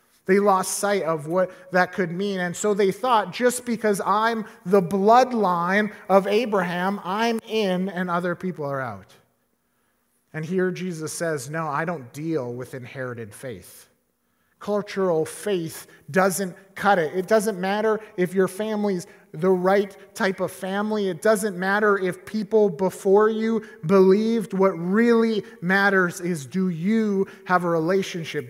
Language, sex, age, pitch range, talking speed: English, male, 30-49, 145-200 Hz, 145 wpm